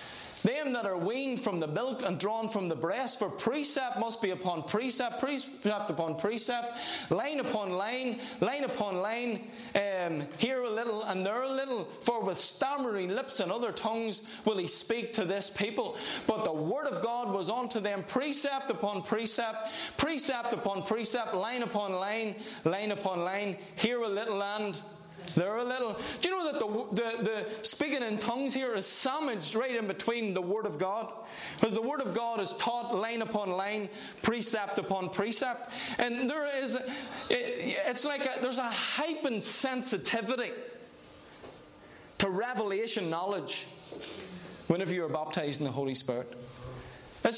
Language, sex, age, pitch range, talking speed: English, male, 20-39, 200-255 Hz, 165 wpm